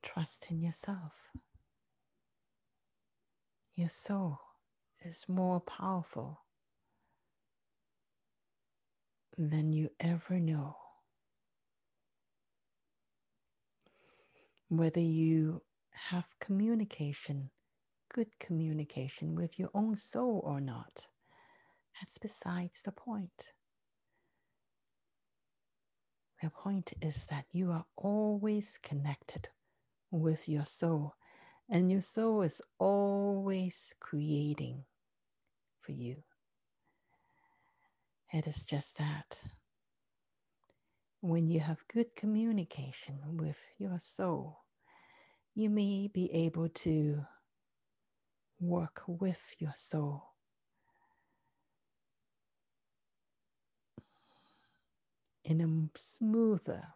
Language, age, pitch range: English, 50-69, 150-200 Hz